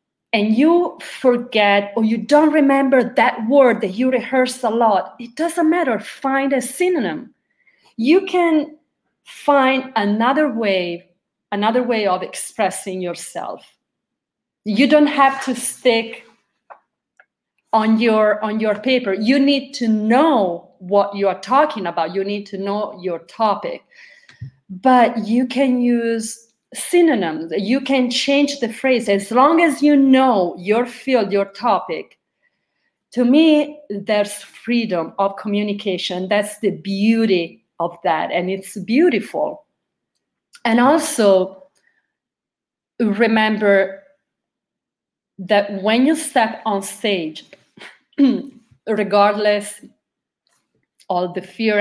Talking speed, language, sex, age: 115 wpm, Italian, female, 30-49